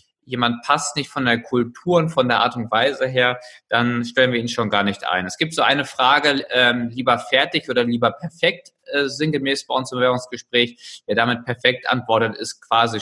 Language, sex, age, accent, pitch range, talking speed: German, male, 20-39, German, 115-140 Hz, 205 wpm